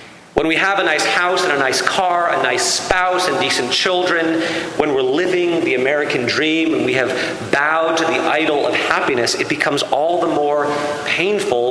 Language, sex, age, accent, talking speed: English, male, 40-59, American, 190 wpm